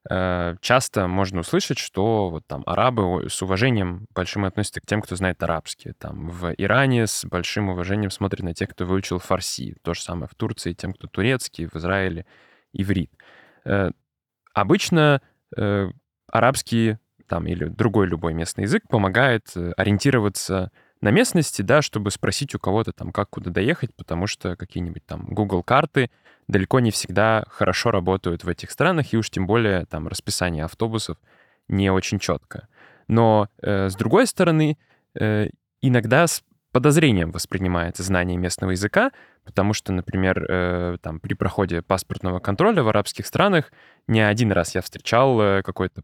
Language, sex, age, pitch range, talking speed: Russian, male, 10-29, 90-115 Hz, 140 wpm